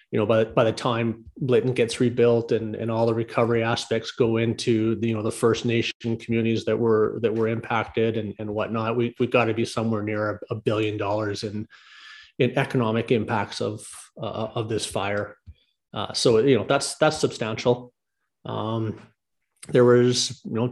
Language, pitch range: English, 110-120 Hz